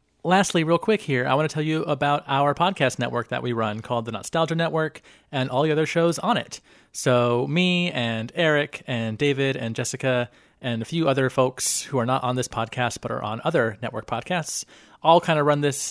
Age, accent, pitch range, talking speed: 30-49, American, 120-150 Hz, 215 wpm